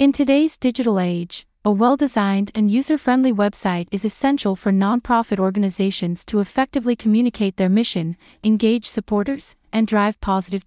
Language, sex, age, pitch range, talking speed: English, female, 30-49, 190-240 Hz, 145 wpm